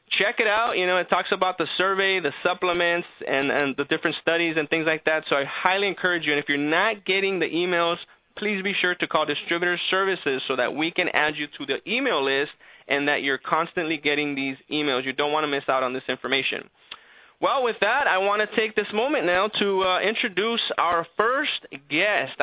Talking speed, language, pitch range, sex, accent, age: 220 wpm, English, 145-195 Hz, male, American, 20-39